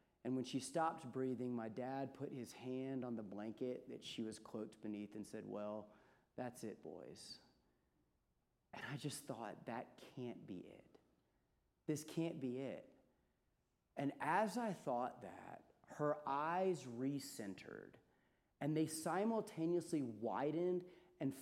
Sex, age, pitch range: male, 30-49, 130-180 Hz